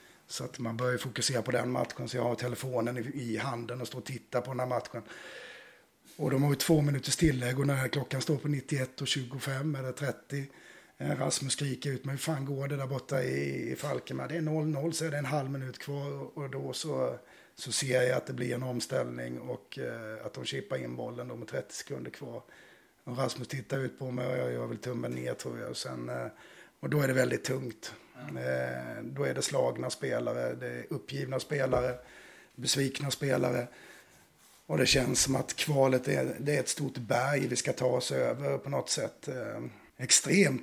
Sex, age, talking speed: male, 30-49, 195 wpm